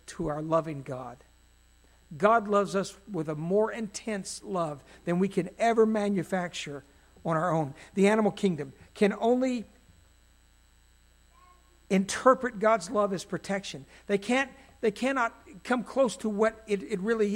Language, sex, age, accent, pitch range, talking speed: English, male, 60-79, American, 170-225 Hz, 140 wpm